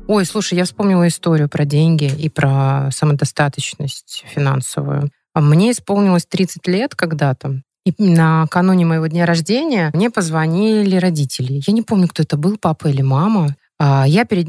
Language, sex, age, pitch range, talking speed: Russian, female, 20-39, 145-185 Hz, 150 wpm